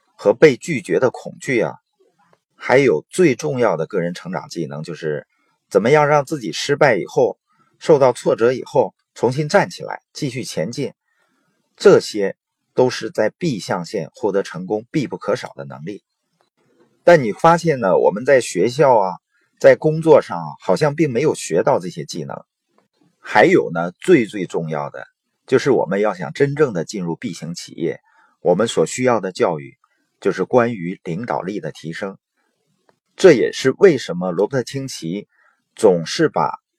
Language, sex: Chinese, male